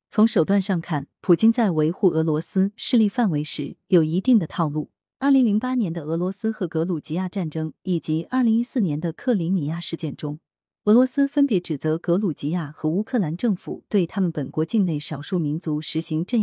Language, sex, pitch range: Chinese, female, 160-225 Hz